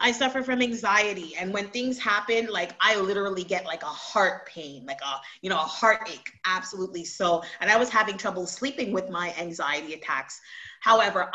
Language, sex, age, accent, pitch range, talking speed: English, female, 30-49, American, 180-240 Hz, 185 wpm